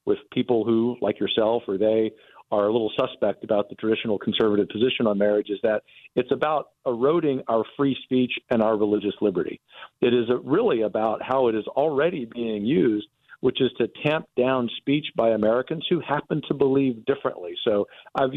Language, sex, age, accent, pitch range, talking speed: English, male, 50-69, American, 110-135 Hz, 180 wpm